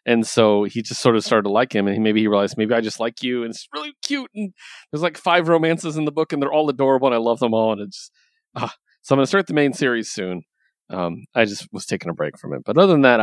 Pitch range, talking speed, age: 105-145 Hz, 305 wpm, 30-49